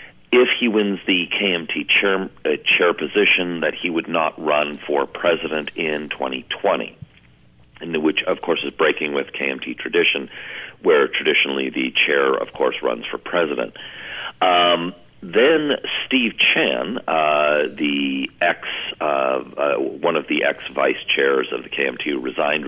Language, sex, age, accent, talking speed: English, male, 50-69, American, 145 wpm